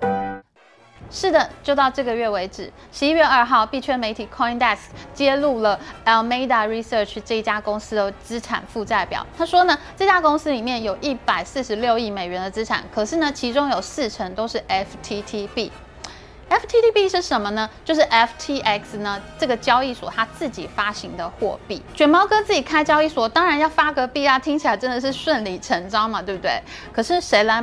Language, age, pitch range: Chinese, 20-39, 210-295 Hz